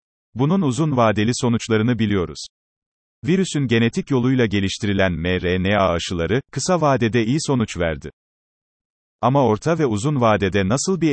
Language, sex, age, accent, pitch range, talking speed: Turkish, male, 40-59, native, 100-135 Hz, 125 wpm